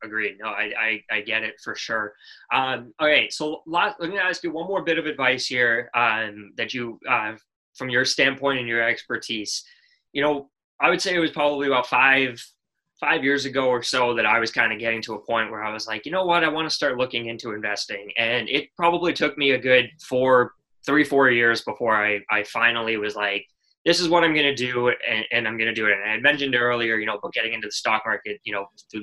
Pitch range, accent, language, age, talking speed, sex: 110-140 Hz, American, English, 20-39, 245 wpm, male